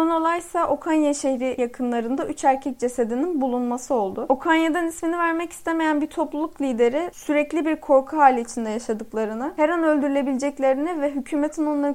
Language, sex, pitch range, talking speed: Turkish, female, 250-305 Hz, 140 wpm